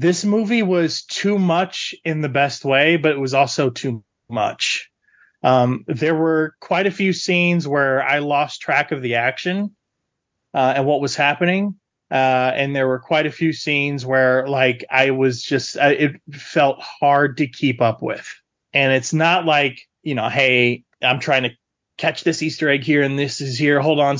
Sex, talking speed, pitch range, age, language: male, 185 wpm, 135-160 Hz, 30-49, English